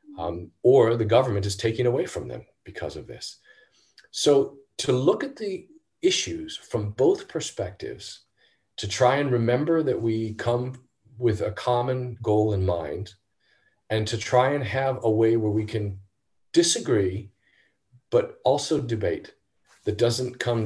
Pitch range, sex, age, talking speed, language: 100-125 Hz, male, 40-59, 150 wpm, Slovak